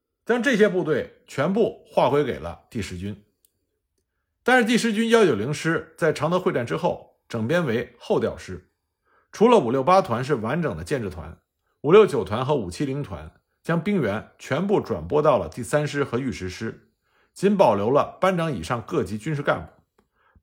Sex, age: male, 50-69